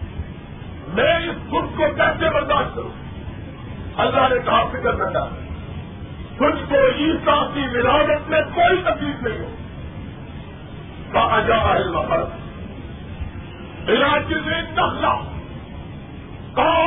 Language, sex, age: Urdu, male, 50-69